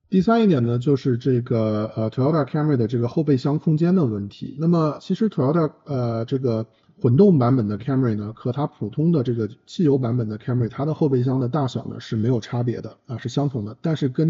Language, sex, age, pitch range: Chinese, male, 50-69, 115-150 Hz